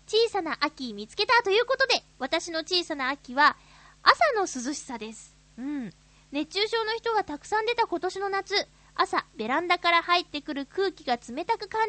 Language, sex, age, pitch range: Japanese, female, 20-39, 260-400 Hz